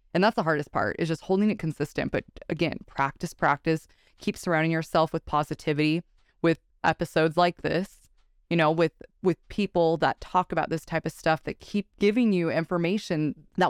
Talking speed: 180 wpm